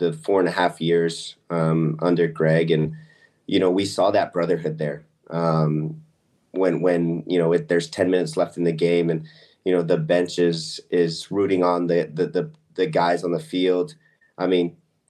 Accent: American